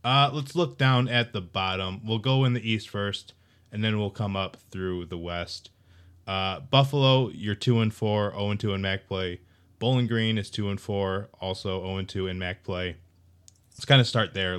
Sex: male